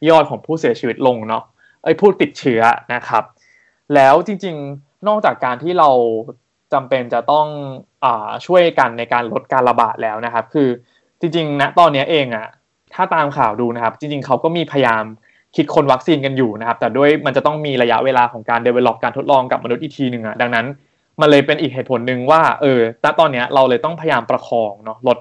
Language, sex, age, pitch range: English, male, 20-39, 120-150 Hz